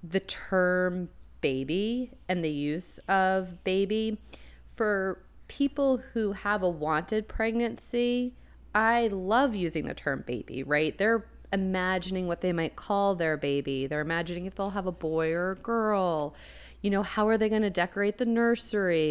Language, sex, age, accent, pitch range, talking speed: English, female, 30-49, American, 160-215 Hz, 155 wpm